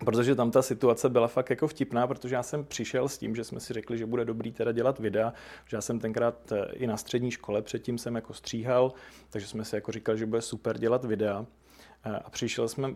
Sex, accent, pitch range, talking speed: male, native, 110-125 Hz, 220 wpm